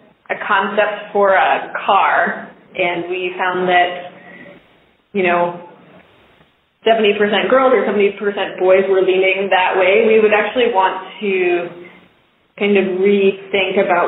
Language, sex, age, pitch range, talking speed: English, female, 20-39, 190-210 Hz, 125 wpm